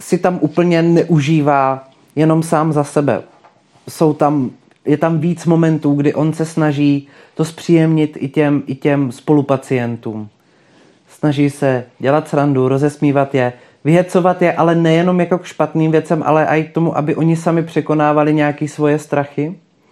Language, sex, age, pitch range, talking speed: Czech, male, 30-49, 135-155 Hz, 150 wpm